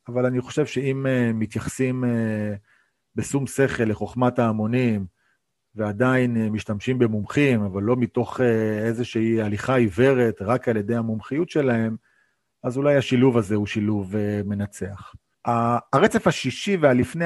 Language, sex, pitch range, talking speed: Hebrew, male, 110-130 Hz, 115 wpm